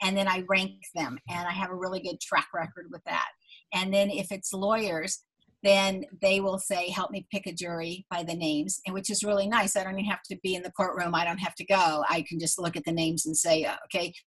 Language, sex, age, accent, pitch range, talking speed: English, female, 50-69, American, 175-205 Hz, 255 wpm